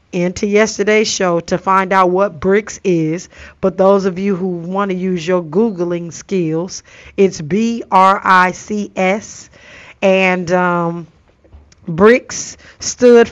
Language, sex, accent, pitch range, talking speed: English, female, American, 180-220 Hz, 115 wpm